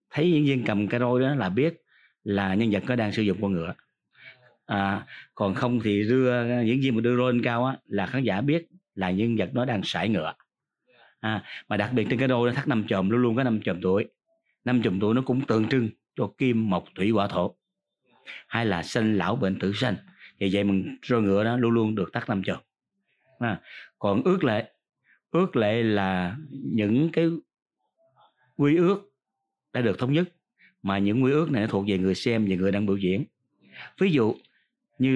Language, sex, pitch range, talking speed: Vietnamese, male, 100-135 Hz, 210 wpm